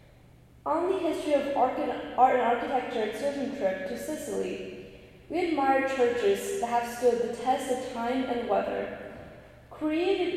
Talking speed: 145 wpm